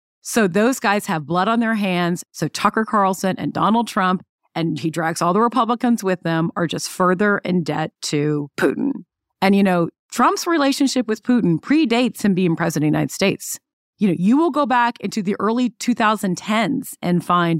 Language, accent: English, American